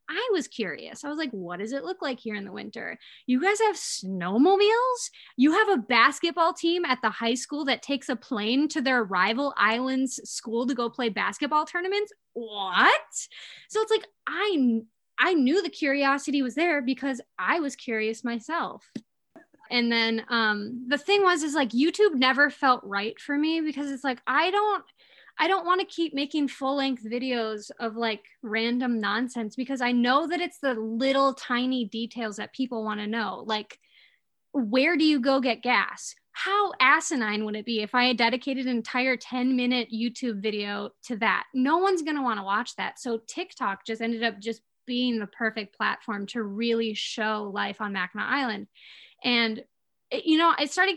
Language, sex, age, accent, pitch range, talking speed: English, female, 20-39, American, 230-300 Hz, 185 wpm